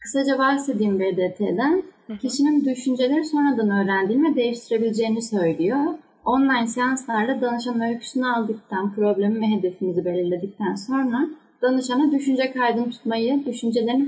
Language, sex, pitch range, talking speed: Turkish, female, 205-265 Hz, 105 wpm